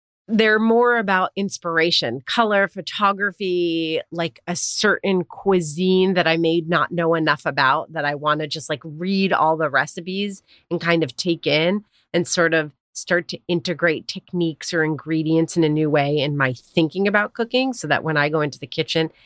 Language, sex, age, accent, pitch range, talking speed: English, female, 30-49, American, 150-185 Hz, 180 wpm